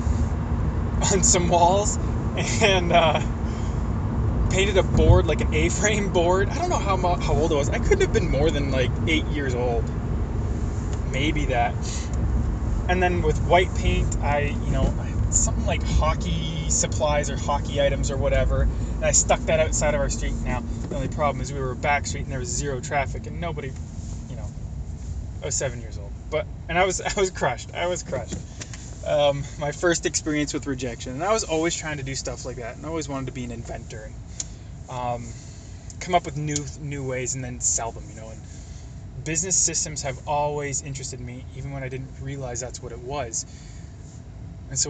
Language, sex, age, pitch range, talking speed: English, male, 20-39, 105-145 Hz, 195 wpm